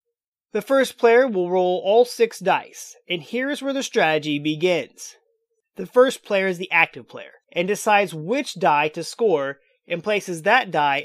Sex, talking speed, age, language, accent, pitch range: male, 175 wpm, 30-49, English, American, 185-280 Hz